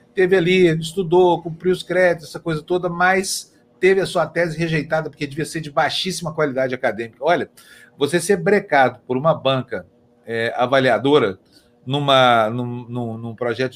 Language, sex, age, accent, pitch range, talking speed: Portuguese, male, 40-59, Brazilian, 135-180 Hz, 155 wpm